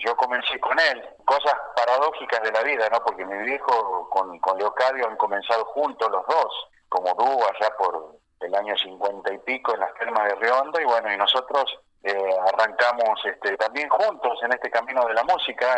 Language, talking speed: Spanish, 190 wpm